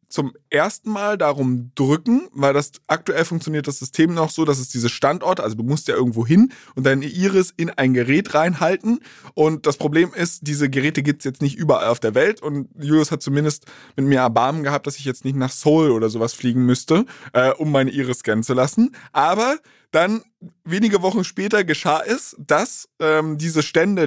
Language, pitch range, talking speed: German, 140-180 Hz, 200 wpm